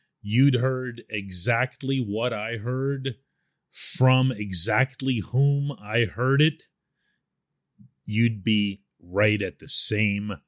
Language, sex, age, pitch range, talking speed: English, male, 40-59, 90-120 Hz, 105 wpm